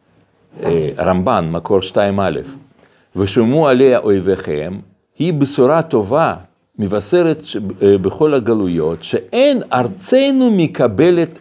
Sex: male